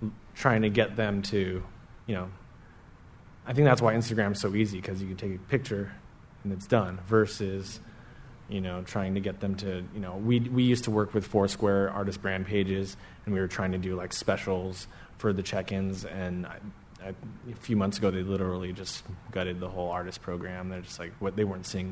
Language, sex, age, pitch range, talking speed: English, male, 30-49, 95-110 Hz, 210 wpm